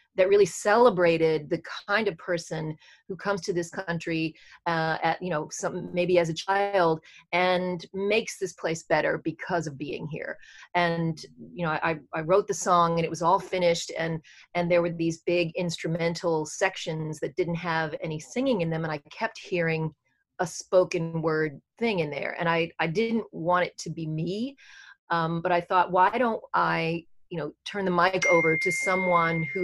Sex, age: female, 30-49